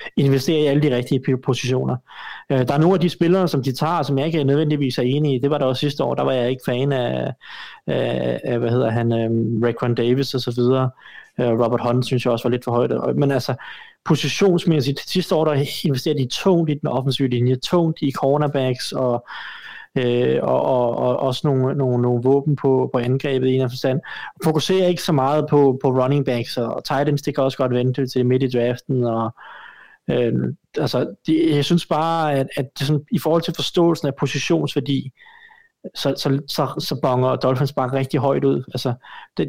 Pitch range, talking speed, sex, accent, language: 125-155 Hz, 195 wpm, male, native, Danish